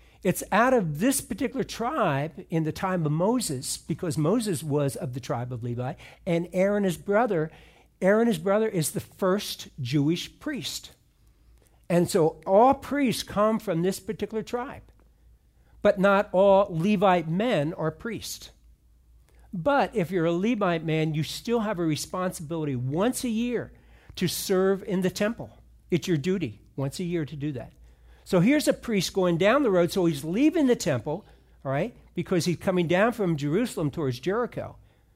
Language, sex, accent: English, male, American